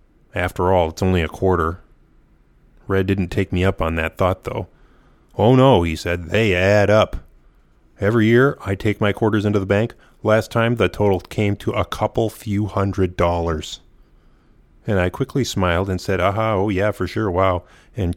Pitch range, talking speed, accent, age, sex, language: 90-105 Hz, 180 wpm, American, 30-49, male, English